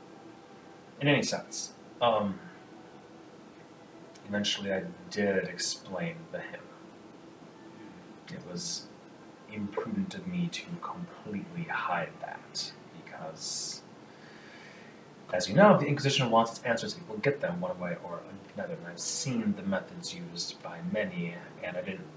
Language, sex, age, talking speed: English, male, 30-49, 130 wpm